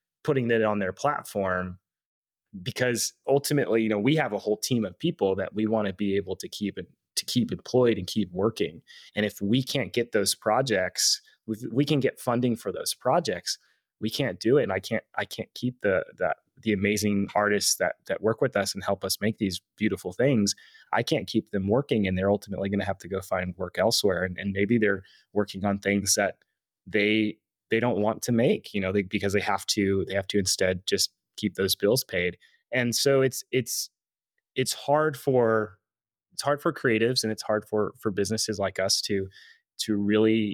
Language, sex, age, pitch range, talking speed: English, male, 20-39, 100-120 Hz, 205 wpm